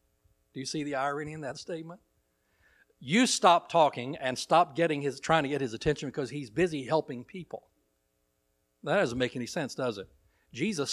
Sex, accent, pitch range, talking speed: male, American, 125-170 Hz, 180 wpm